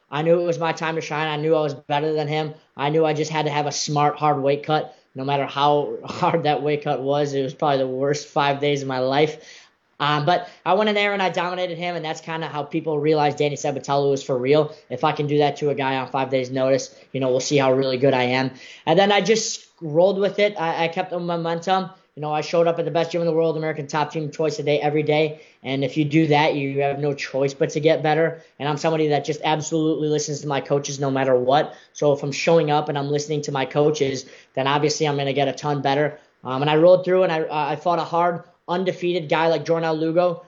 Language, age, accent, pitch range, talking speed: English, 10-29, American, 145-165 Hz, 270 wpm